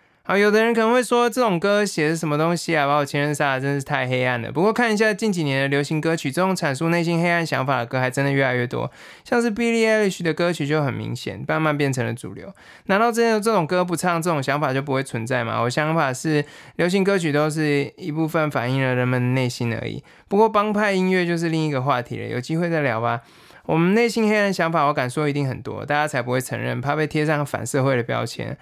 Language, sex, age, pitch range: Chinese, male, 20-39, 130-170 Hz